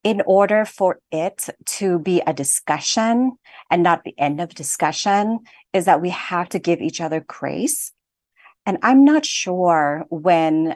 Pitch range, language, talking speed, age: 165-200 Hz, English, 155 wpm, 40-59